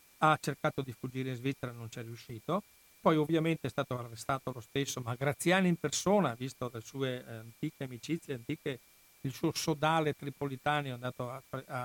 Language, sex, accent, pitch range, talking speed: Italian, male, native, 120-145 Hz, 175 wpm